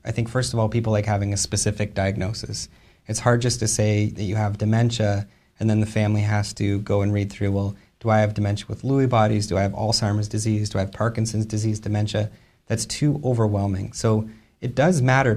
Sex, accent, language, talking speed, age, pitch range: male, American, English, 220 wpm, 30-49, 100-115 Hz